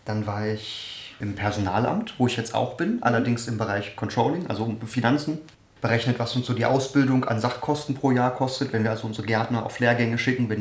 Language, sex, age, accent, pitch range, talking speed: German, male, 30-49, German, 110-135 Hz, 205 wpm